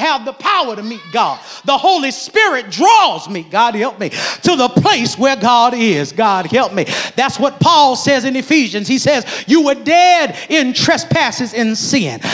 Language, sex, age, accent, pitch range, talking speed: English, male, 40-59, American, 250-325 Hz, 185 wpm